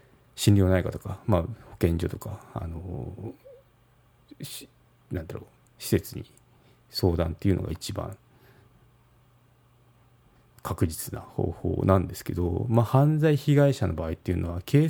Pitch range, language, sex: 90-120 Hz, Japanese, male